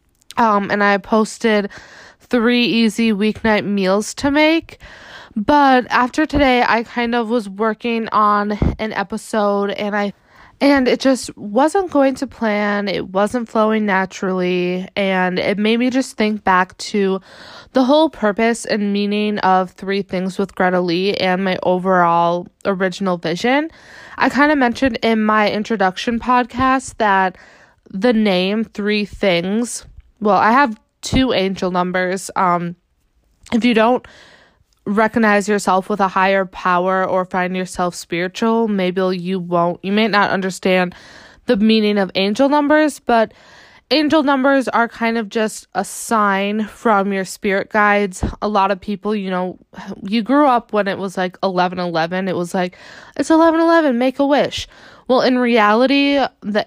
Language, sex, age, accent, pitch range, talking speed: English, female, 20-39, American, 190-240 Hz, 150 wpm